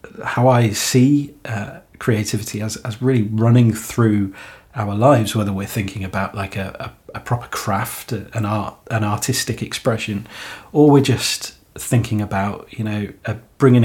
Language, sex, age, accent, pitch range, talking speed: English, male, 30-49, British, 105-125 Hz, 155 wpm